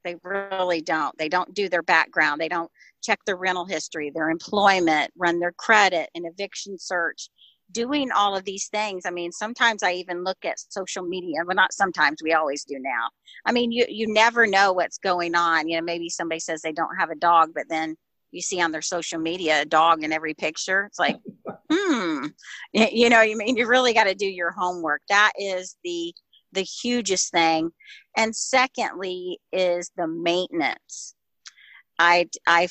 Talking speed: 190 wpm